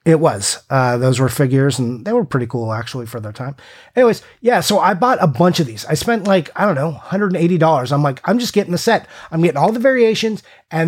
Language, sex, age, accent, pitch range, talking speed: English, male, 30-49, American, 135-185 Hz, 245 wpm